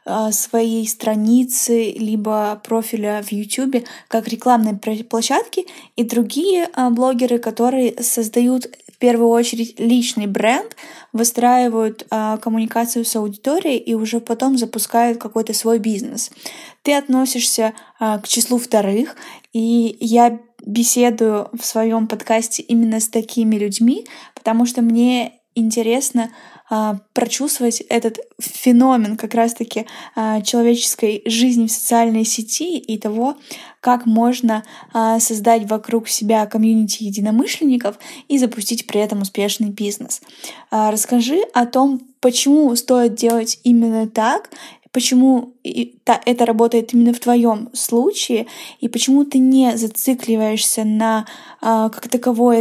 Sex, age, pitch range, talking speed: female, 10-29, 225-250 Hz, 110 wpm